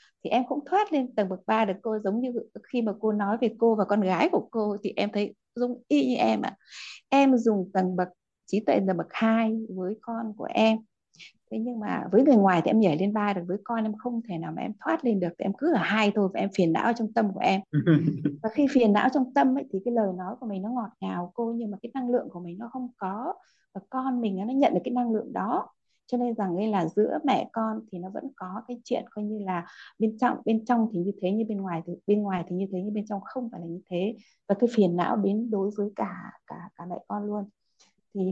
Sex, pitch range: female, 190-235 Hz